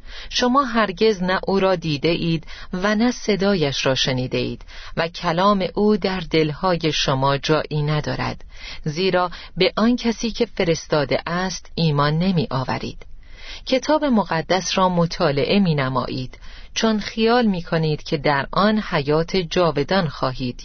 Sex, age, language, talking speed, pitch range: female, 40-59, Persian, 135 wpm, 150-205 Hz